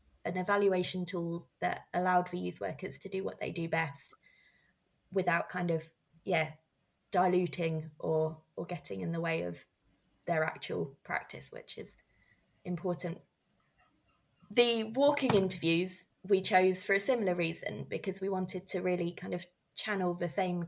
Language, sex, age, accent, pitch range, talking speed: English, female, 20-39, British, 165-190 Hz, 150 wpm